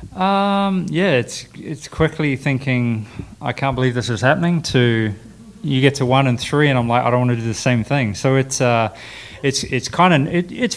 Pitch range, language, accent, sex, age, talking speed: 110-125 Hz, English, Australian, male, 20-39, 215 wpm